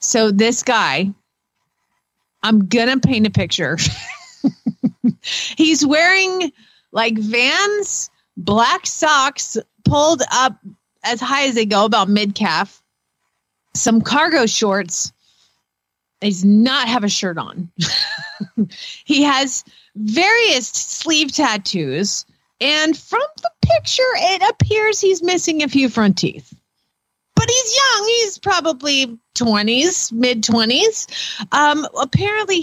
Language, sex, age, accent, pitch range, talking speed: English, female, 30-49, American, 225-325 Hz, 110 wpm